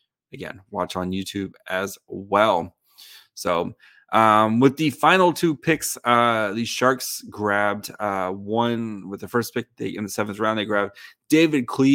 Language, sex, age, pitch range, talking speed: English, male, 30-49, 100-125 Hz, 160 wpm